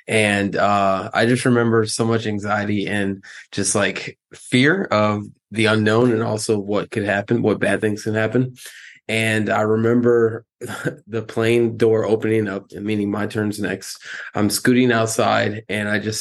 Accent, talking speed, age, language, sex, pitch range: American, 160 wpm, 20-39, English, male, 105-115 Hz